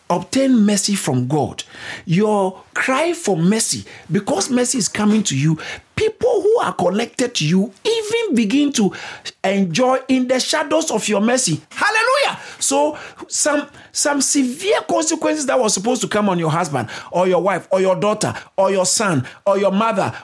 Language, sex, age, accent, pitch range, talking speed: English, male, 50-69, Nigerian, 195-290 Hz, 165 wpm